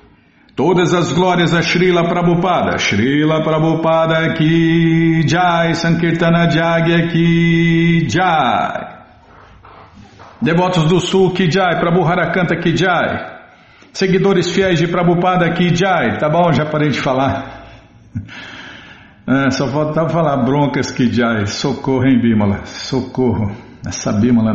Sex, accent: male, Brazilian